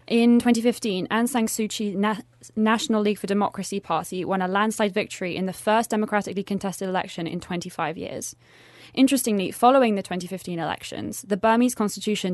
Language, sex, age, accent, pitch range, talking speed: English, female, 20-39, British, 185-220 Hz, 155 wpm